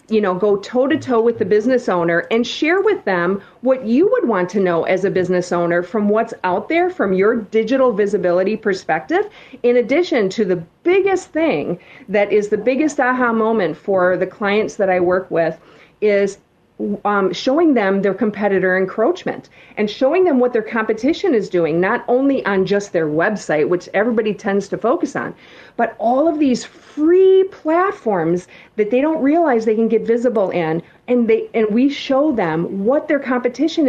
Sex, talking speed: female, 180 wpm